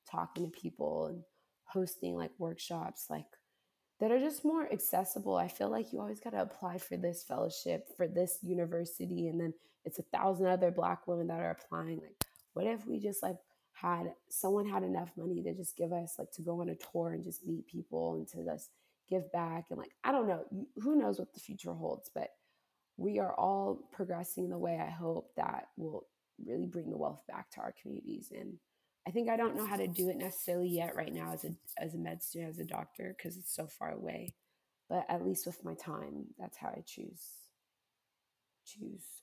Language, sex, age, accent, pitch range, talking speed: English, female, 20-39, American, 160-185 Hz, 210 wpm